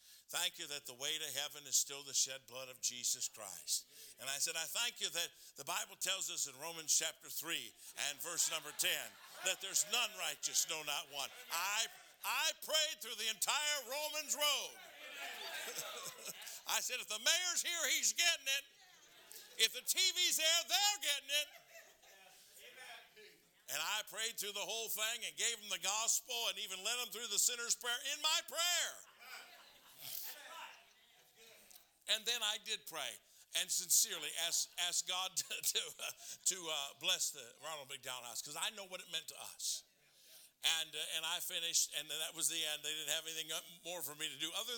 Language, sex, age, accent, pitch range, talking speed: English, male, 60-79, American, 155-245 Hz, 185 wpm